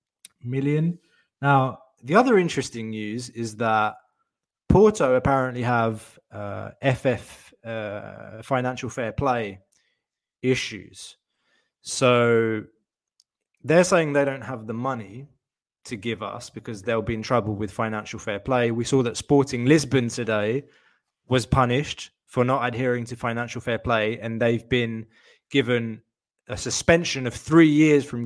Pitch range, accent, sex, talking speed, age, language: 115-145 Hz, British, male, 135 wpm, 20-39, Greek